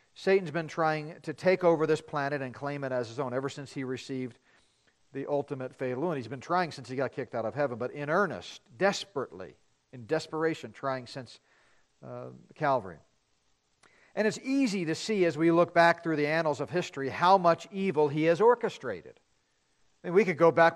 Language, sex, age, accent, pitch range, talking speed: English, male, 50-69, American, 125-180 Hz, 195 wpm